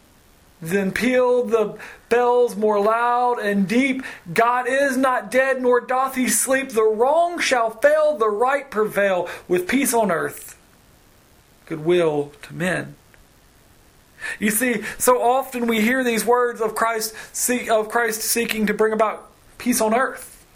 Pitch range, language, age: 205-245 Hz, English, 40-59